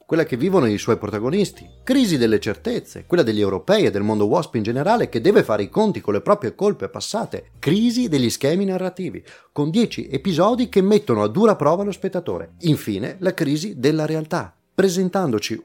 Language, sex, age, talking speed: Italian, male, 30-49, 185 wpm